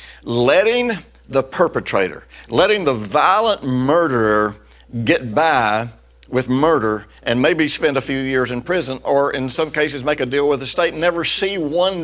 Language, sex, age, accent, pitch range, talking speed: English, male, 60-79, American, 95-140 Hz, 165 wpm